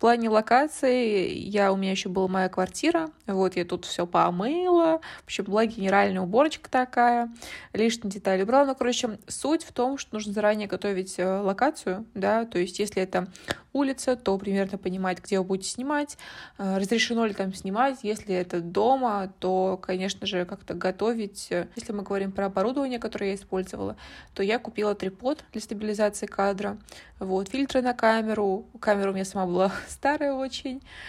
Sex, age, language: female, 20-39, Russian